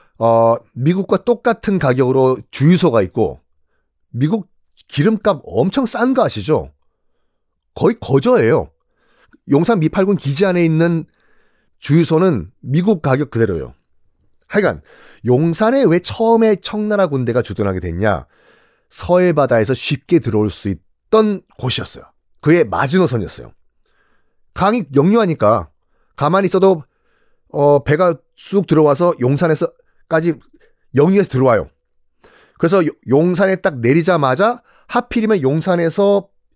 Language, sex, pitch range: Korean, male, 125-200 Hz